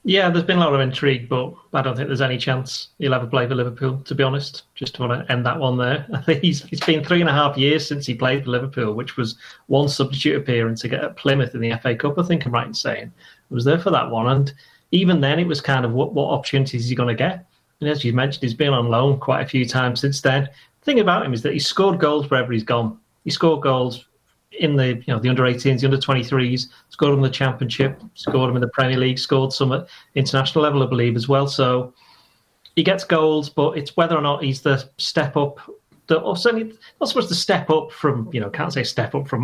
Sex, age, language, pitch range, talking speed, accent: male, 30-49, English, 125-150 Hz, 250 wpm, British